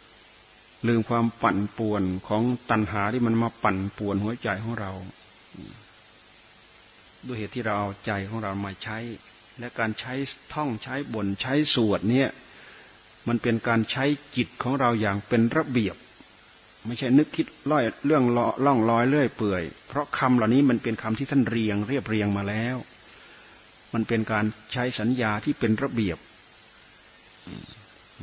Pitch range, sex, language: 105-125 Hz, male, Thai